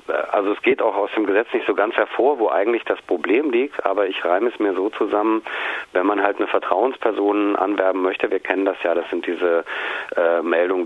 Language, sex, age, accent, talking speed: German, male, 40-59, German, 215 wpm